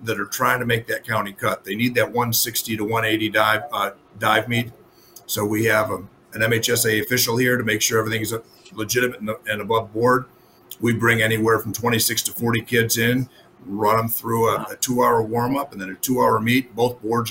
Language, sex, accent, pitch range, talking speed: English, male, American, 110-120 Hz, 210 wpm